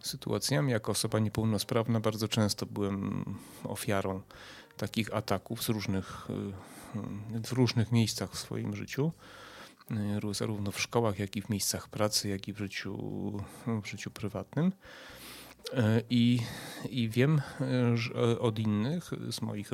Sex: male